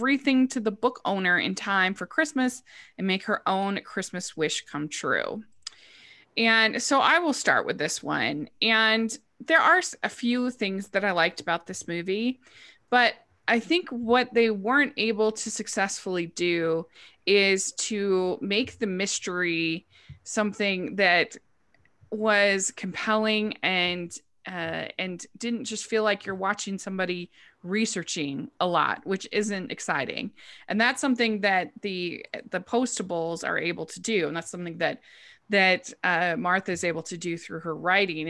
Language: English